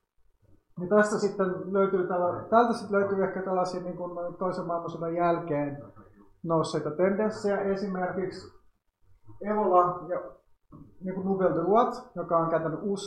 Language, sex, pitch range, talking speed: Finnish, male, 150-185 Hz, 110 wpm